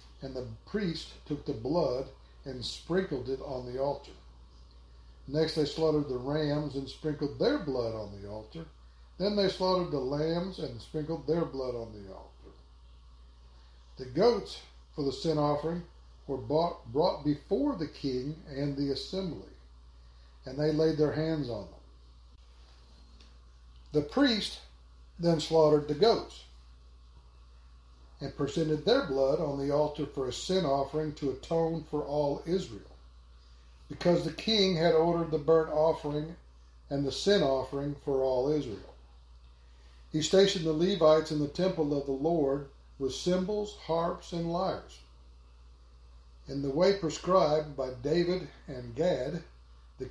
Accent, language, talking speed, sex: American, English, 140 wpm, male